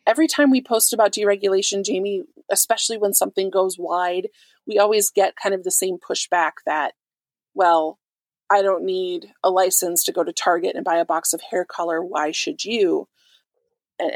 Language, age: English, 30-49